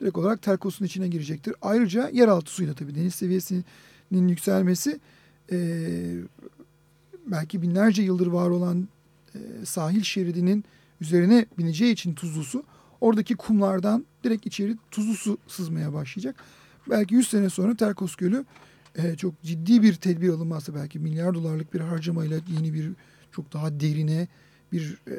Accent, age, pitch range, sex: native, 40-59, 165-225 Hz, male